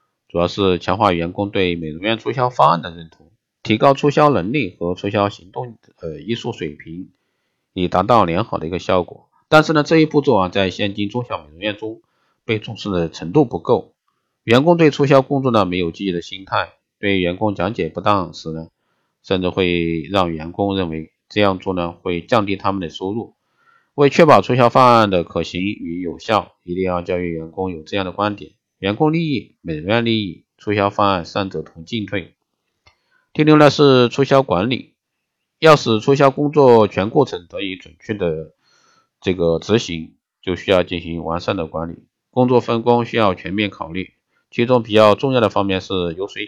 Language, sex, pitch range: Chinese, male, 85-115 Hz